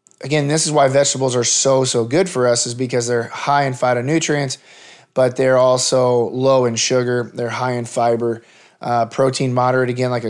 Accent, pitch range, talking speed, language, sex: American, 125-145 Hz, 185 wpm, English, male